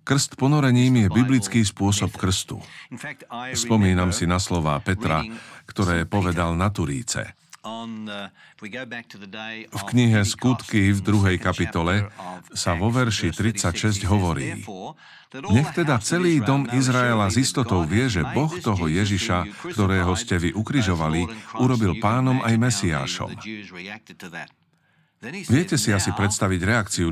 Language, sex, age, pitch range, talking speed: Slovak, male, 50-69, 90-120 Hz, 115 wpm